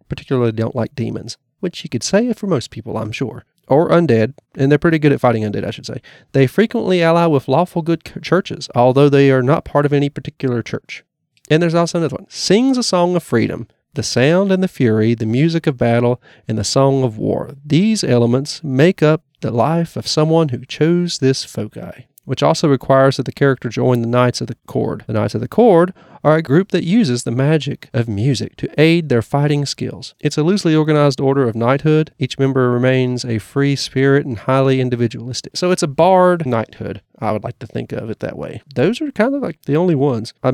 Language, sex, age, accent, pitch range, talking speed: English, male, 30-49, American, 120-155 Hz, 220 wpm